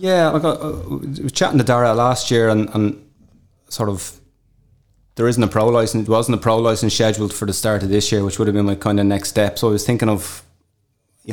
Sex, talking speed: male, 245 wpm